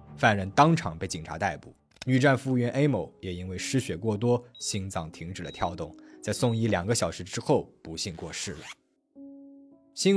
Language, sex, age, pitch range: Chinese, male, 20-39, 95-145 Hz